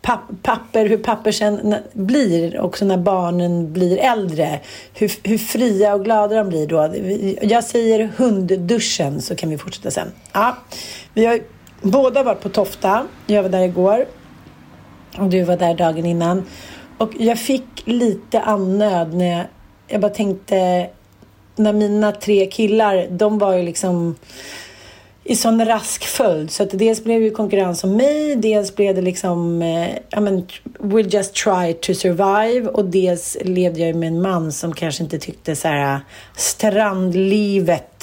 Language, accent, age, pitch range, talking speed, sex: Swedish, native, 40-59, 170-210 Hz, 150 wpm, female